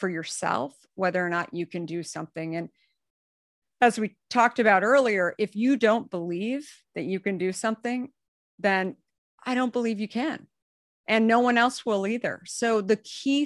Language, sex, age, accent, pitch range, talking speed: English, female, 50-69, American, 180-220 Hz, 175 wpm